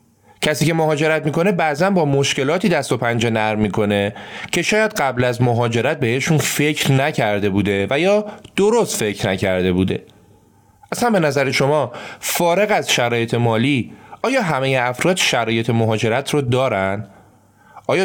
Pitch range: 110-155 Hz